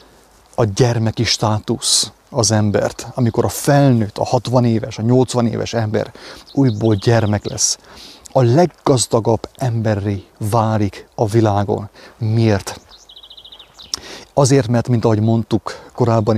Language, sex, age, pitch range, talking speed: English, male, 30-49, 105-125 Hz, 115 wpm